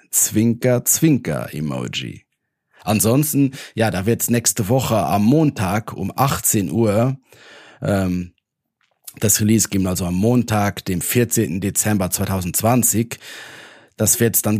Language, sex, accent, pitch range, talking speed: German, male, German, 100-120 Hz, 105 wpm